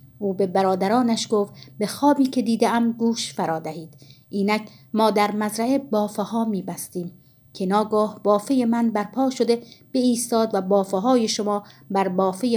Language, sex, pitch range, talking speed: Persian, female, 190-235 Hz, 155 wpm